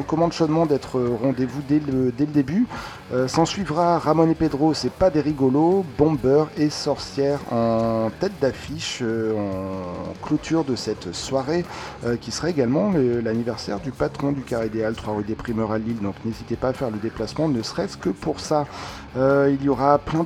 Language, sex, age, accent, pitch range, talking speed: French, male, 40-59, French, 120-150 Hz, 190 wpm